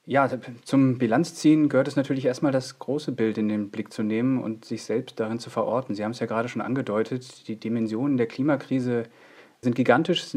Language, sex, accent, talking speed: German, male, German, 205 wpm